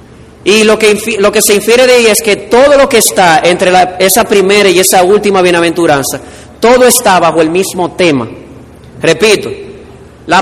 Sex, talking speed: male, 180 wpm